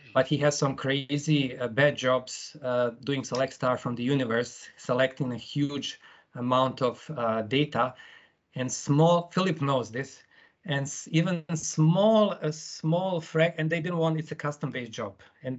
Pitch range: 125-155 Hz